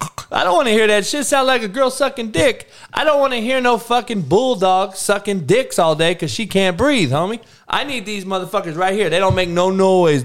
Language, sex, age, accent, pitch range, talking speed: English, male, 20-39, American, 130-210 Hz, 240 wpm